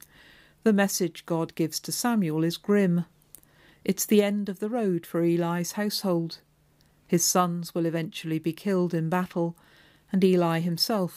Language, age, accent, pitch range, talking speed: English, 50-69, British, 165-205 Hz, 150 wpm